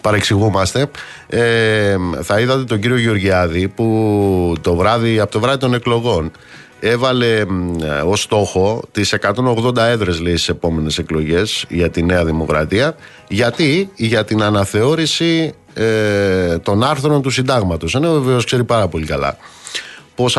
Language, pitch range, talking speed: Greek, 90-125 Hz, 130 wpm